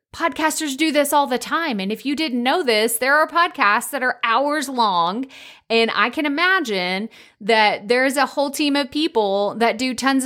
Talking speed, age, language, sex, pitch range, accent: 195 wpm, 30-49, English, female, 200-305 Hz, American